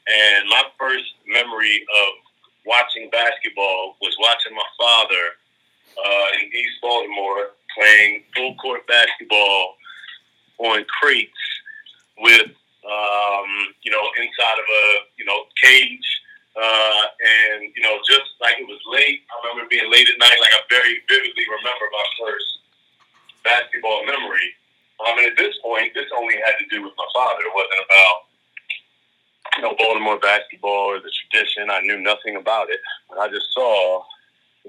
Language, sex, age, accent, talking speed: English, male, 40-59, American, 150 wpm